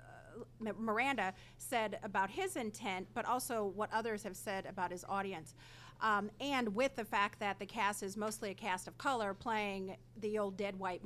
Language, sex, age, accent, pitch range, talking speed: English, female, 40-59, American, 200-240 Hz, 180 wpm